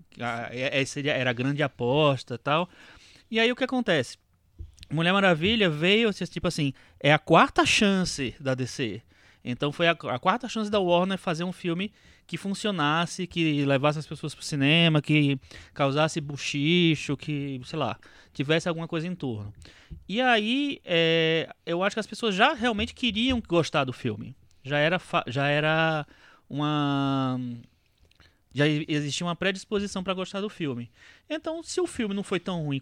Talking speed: 165 wpm